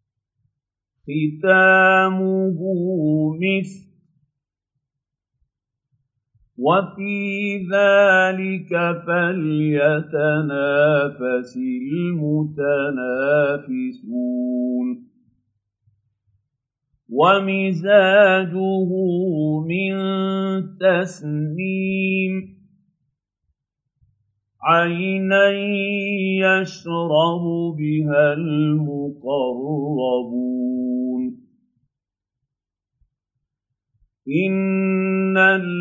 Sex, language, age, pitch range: male, Arabic, 50-69, 140-190 Hz